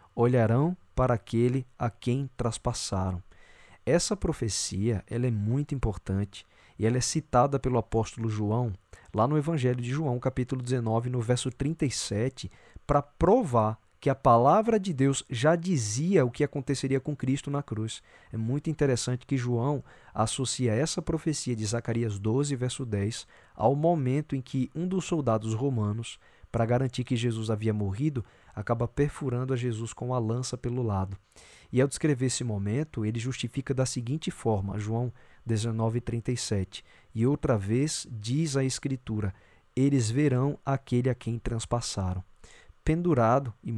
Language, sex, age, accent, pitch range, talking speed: Portuguese, male, 20-39, Brazilian, 110-140 Hz, 145 wpm